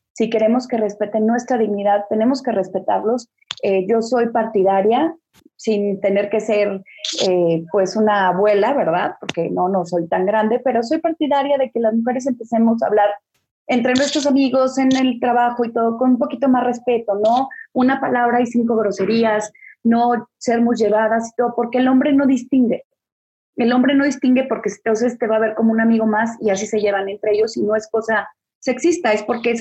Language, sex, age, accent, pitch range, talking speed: English, female, 30-49, Mexican, 210-255 Hz, 195 wpm